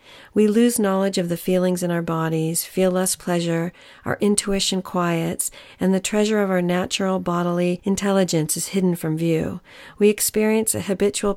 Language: English